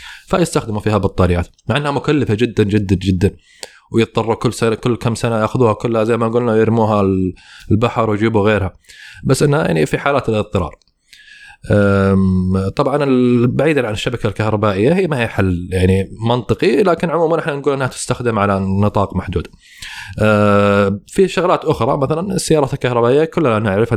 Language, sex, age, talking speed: Arabic, male, 20-39, 145 wpm